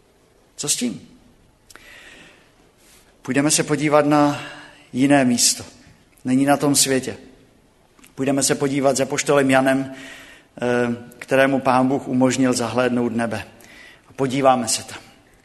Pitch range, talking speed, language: 130-170 Hz, 110 wpm, Czech